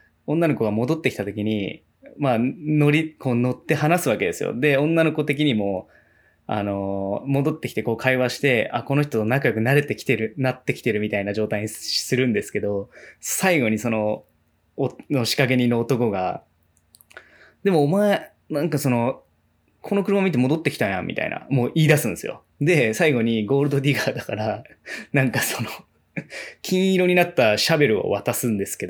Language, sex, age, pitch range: Japanese, male, 20-39, 110-155 Hz